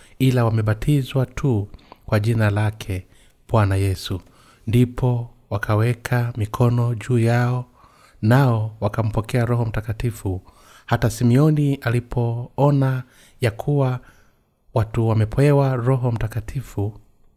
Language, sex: Swahili, male